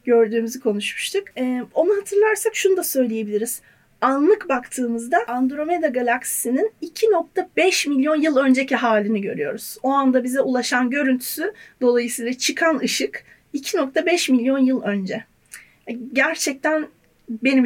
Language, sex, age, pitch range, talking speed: Turkish, female, 40-59, 230-295 Hz, 110 wpm